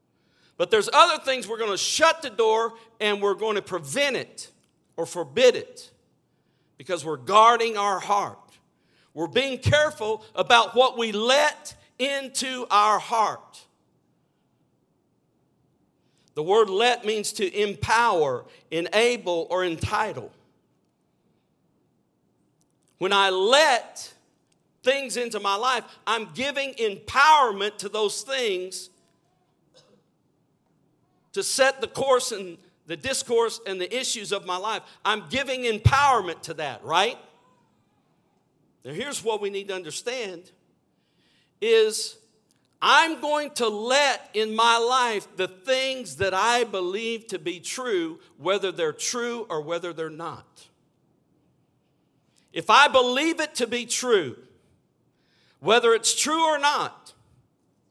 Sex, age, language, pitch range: male, 50-69, English, 195-270 Hz